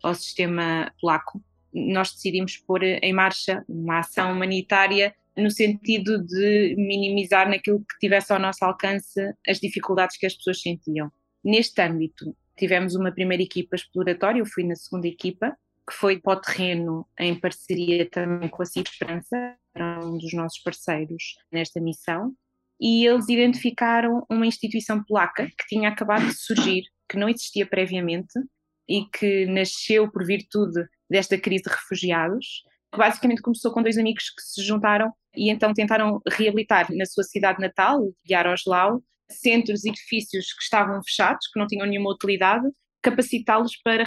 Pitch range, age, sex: 175-215 Hz, 20-39, female